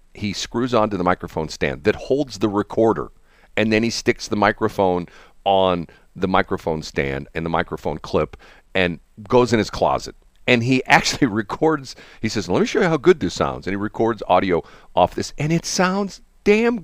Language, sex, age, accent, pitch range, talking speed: English, male, 50-69, American, 95-145 Hz, 190 wpm